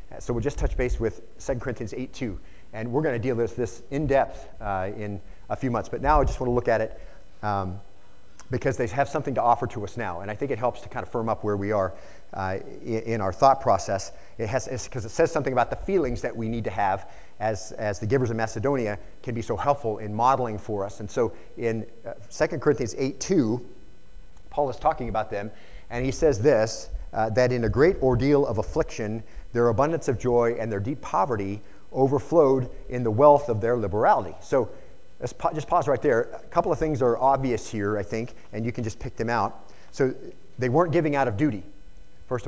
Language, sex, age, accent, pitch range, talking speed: English, male, 30-49, American, 105-130 Hz, 220 wpm